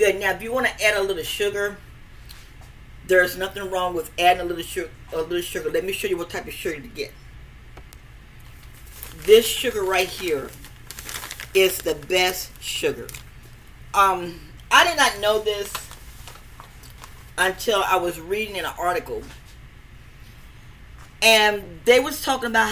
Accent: American